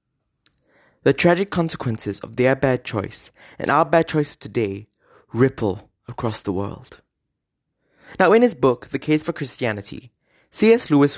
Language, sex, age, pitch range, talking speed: English, male, 20-39, 120-175 Hz, 140 wpm